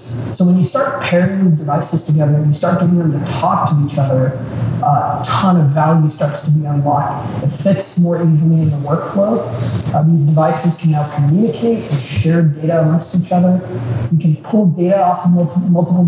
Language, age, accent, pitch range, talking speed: English, 20-39, American, 150-175 Hz, 190 wpm